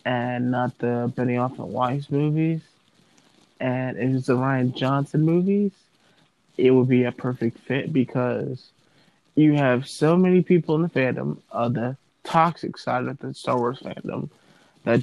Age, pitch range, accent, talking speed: 20-39, 125-150 Hz, American, 155 wpm